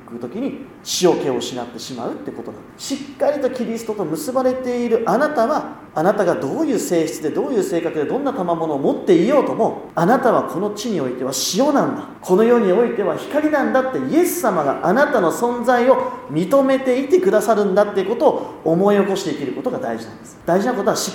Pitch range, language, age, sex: 195-275 Hz, Japanese, 40-59, male